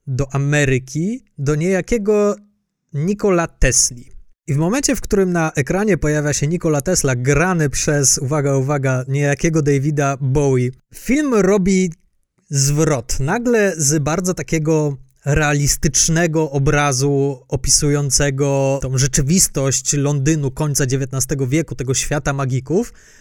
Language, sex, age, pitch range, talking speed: Polish, male, 20-39, 140-195 Hz, 110 wpm